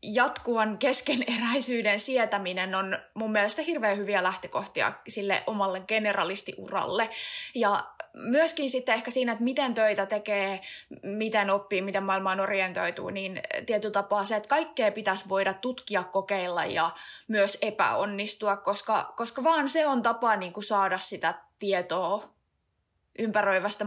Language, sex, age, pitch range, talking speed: Finnish, female, 20-39, 195-250 Hz, 130 wpm